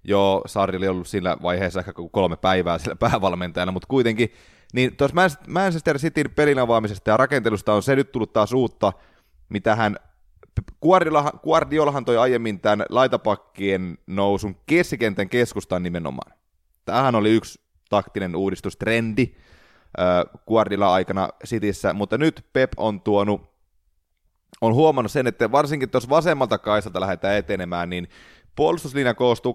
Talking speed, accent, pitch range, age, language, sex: 130 wpm, native, 100-135 Hz, 20-39, Finnish, male